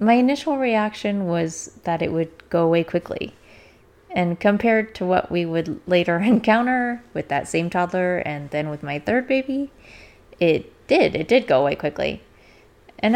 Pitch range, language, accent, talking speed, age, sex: 170-245 Hz, English, American, 165 wpm, 20-39, female